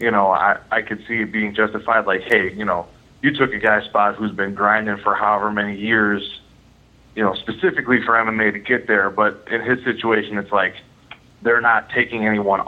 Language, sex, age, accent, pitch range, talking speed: English, male, 20-39, American, 105-120 Hz, 205 wpm